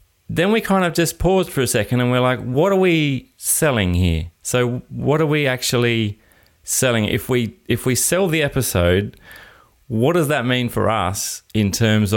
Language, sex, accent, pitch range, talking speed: English, male, Australian, 95-125 Hz, 190 wpm